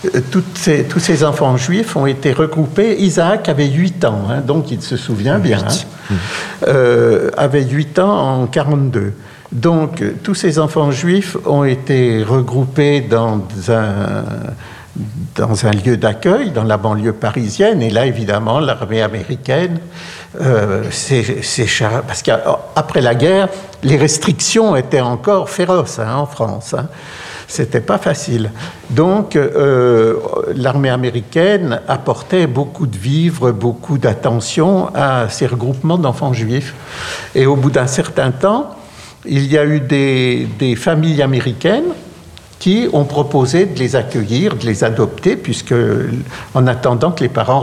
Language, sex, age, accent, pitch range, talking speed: French, male, 60-79, French, 120-160 Hz, 140 wpm